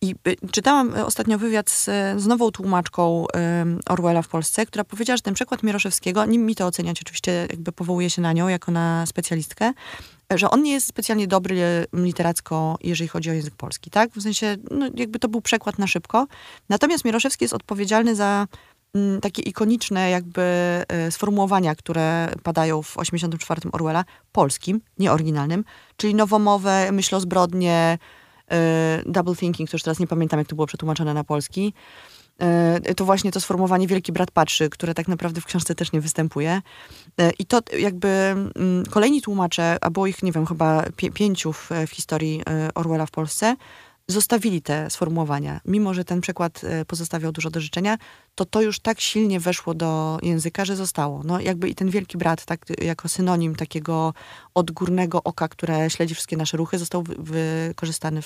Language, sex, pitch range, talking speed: Polish, female, 160-195 Hz, 165 wpm